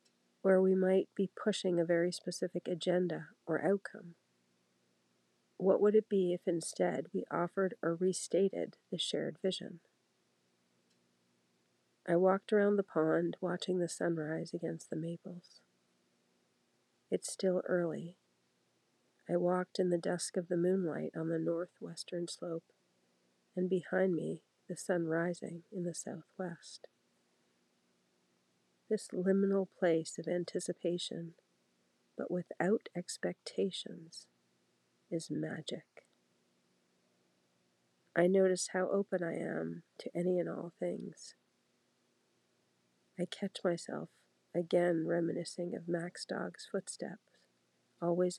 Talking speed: 110 wpm